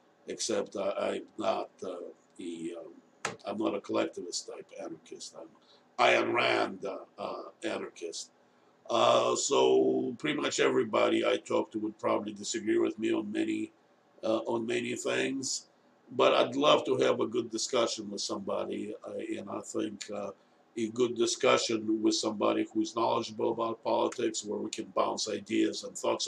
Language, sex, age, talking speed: English, male, 50-69, 160 wpm